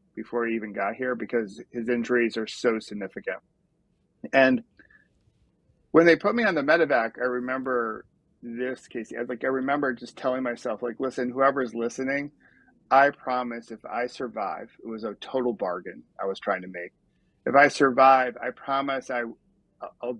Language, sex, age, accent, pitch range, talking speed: English, male, 40-59, American, 120-135 Hz, 165 wpm